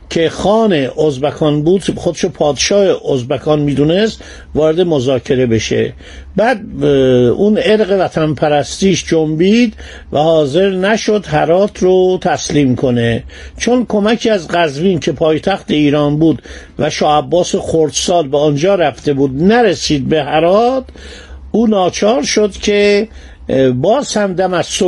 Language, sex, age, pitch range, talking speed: Persian, male, 50-69, 150-205 Hz, 125 wpm